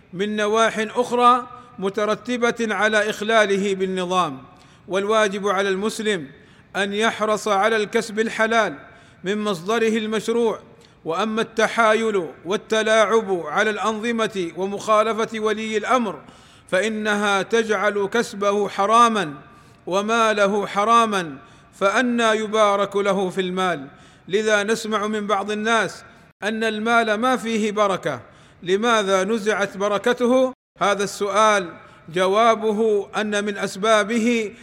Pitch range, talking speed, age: 195-225 Hz, 95 wpm, 40-59